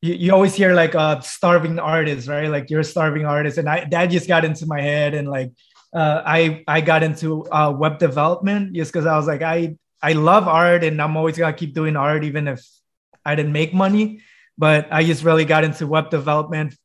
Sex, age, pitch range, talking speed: male, 20-39, 150-170 Hz, 225 wpm